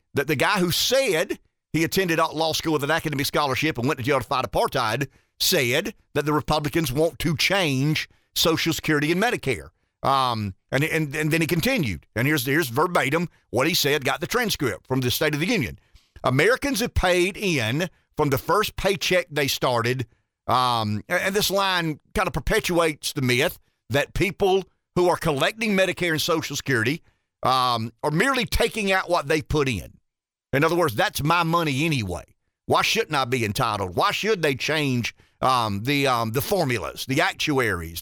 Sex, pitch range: male, 130-175 Hz